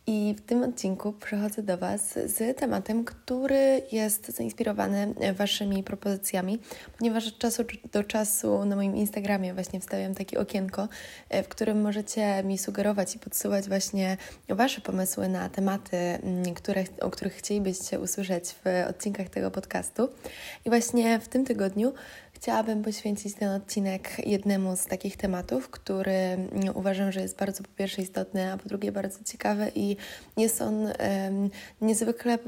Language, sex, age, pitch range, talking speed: Polish, female, 20-39, 190-215 Hz, 145 wpm